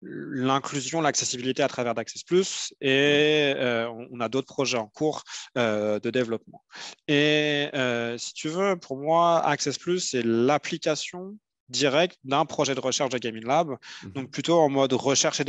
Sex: male